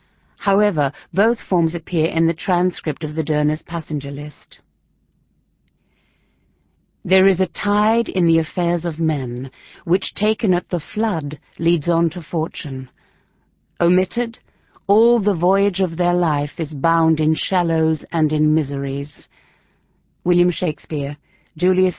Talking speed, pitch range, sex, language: 130 wpm, 155-195 Hz, female, English